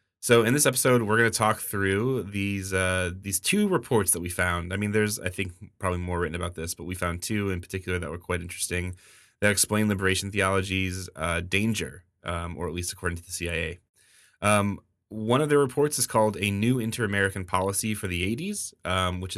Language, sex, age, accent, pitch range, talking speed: English, male, 20-39, American, 90-110 Hz, 205 wpm